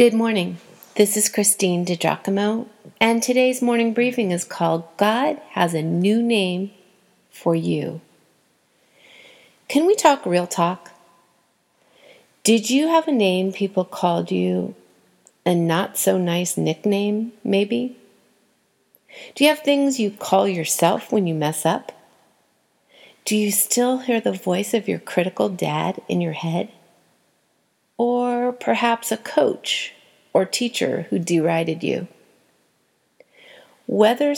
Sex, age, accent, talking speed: female, 40-59, American, 120 wpm